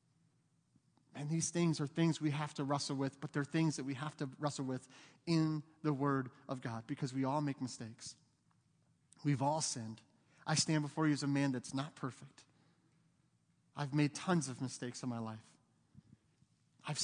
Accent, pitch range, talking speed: American, 135-165 Hz, 180 wpm